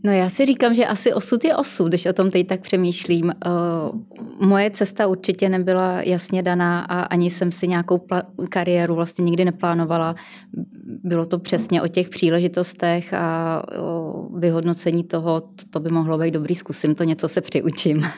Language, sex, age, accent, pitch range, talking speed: Czech, female, 20-39, native, 170-185 Hz, 165 wpm